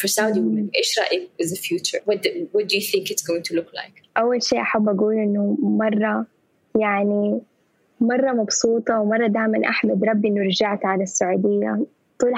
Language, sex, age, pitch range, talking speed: English, female, 10-29, 205-225 Hz, 160 wpm